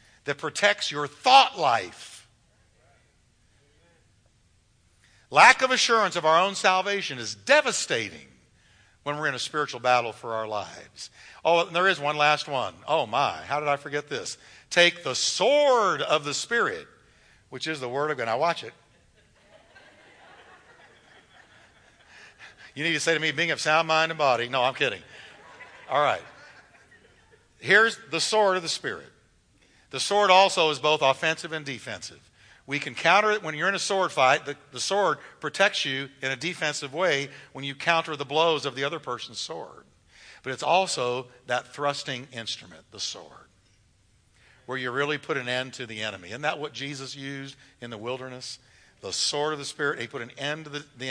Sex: male